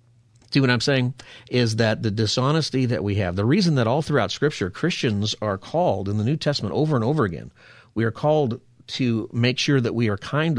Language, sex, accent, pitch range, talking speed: English, male, American, 105-125 Hz, 215 wpm